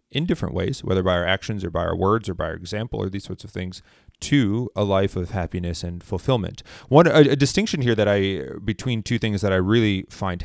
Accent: American